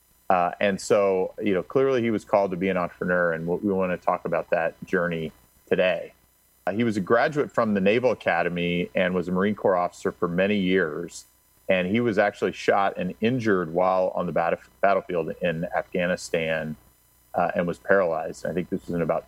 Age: 40-59